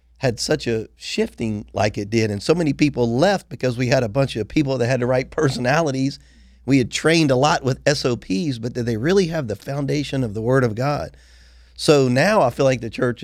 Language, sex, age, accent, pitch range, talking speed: English, male, 40-59, American, 105-140 Hz, 225 wpm